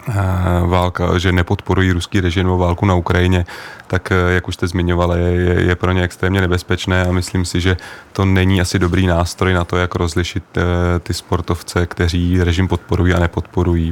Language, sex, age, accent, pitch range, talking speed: Czech, male, 30-49, native, 90-95 Hz, 180 wpm